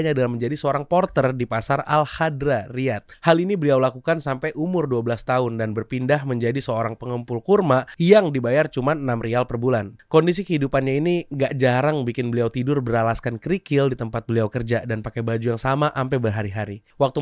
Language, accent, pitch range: Indonesian, native, 115-145 Hz